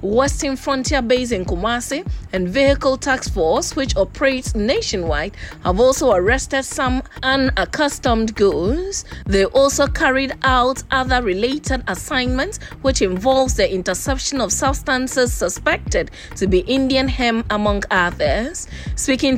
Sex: female